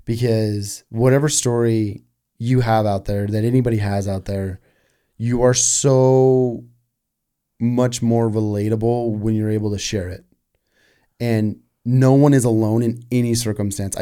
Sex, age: male, 30-49